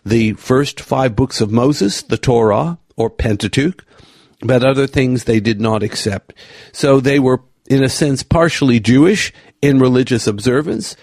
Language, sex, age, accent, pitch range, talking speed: English, male, 50-69, American, 115-145 Hz, 150 wpm